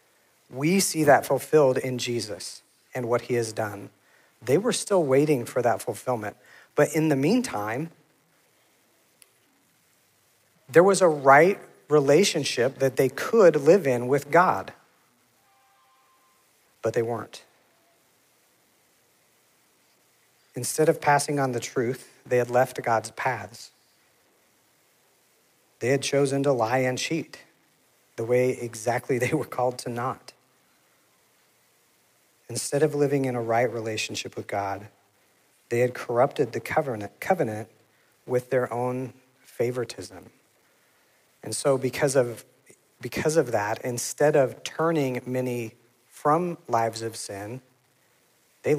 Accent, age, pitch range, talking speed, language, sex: American, 50-69, 115-140 Hz, 120 wpm, English, male